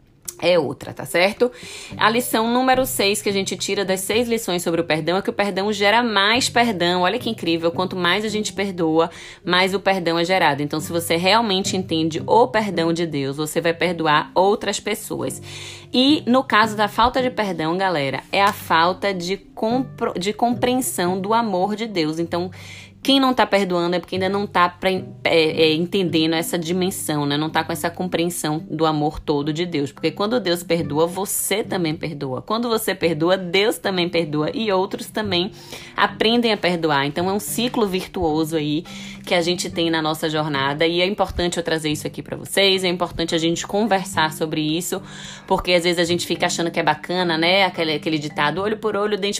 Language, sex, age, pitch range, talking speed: Portuguese, female, 20-39, 165-205 Hz, 200 wpm